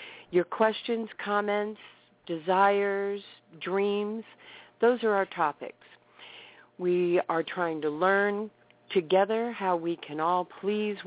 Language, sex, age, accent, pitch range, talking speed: English, female, 50-69, American, 175-215 Hz, 110 wpm